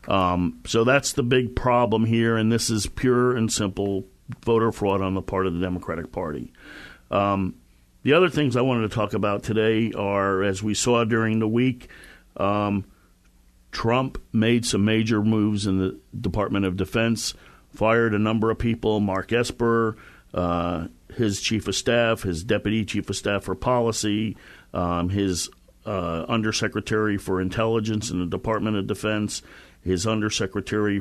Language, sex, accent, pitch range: English, male, American, 100-115 Hz